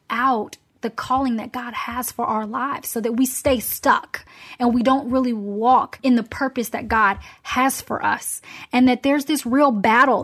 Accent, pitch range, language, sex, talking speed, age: American, 230-270 Hz, English, female, 195 wpm, 10-29